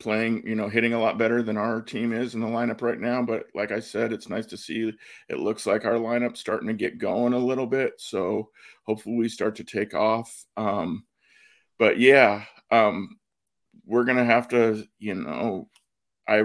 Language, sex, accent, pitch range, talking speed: English, male, American, 110-125 Hz, 195 wpm